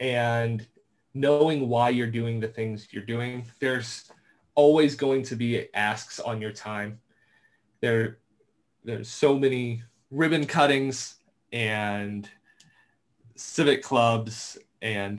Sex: male